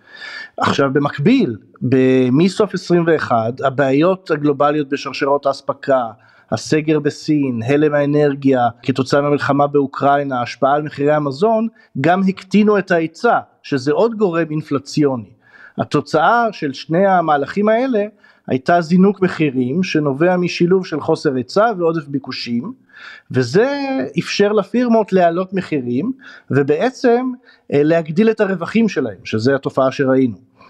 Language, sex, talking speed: Hebrew, male, 110 wpm